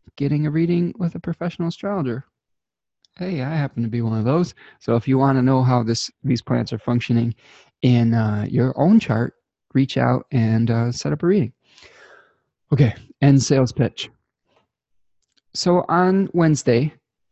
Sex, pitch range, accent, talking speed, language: male, 115-145 Hz, American, 165 wpm, English